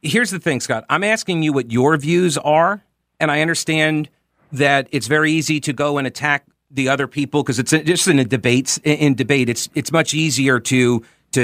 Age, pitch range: 40-59, 130-160 Hz